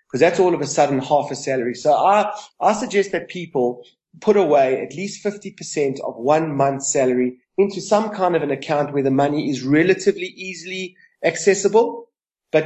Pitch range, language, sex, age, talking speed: 140-175 Hz, English, male, 30-49, 175 wpm